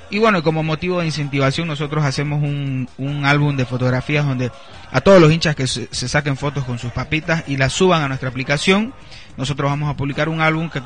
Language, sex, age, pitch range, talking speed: Spanish, male, 30-49, 125-150 Hz, 215 wpm